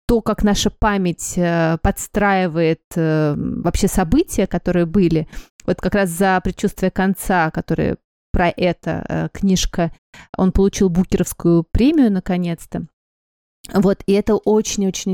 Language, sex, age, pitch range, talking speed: Russian, female, 30-49, 175-205 Hz, 110 wpm